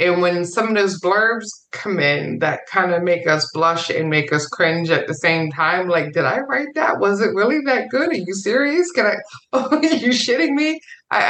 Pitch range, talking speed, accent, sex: 175-245 Hz, 230 wpm, American, female